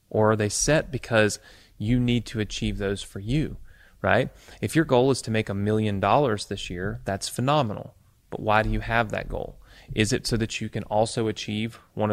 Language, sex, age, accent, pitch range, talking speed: English, male, 30-49, American, 100-115 Hz, 210 wpm